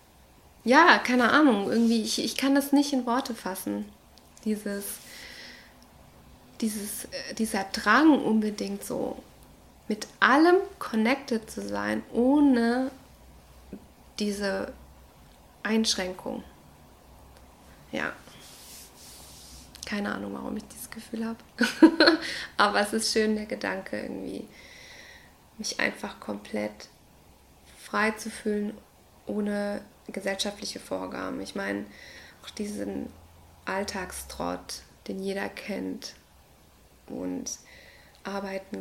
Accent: German